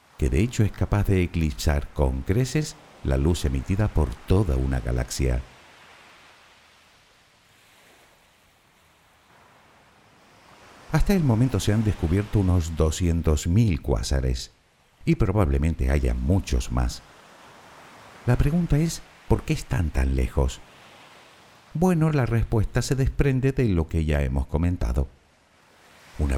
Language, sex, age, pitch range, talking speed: Spanish, male, 60-79, 70-105 Hz, 115 wpm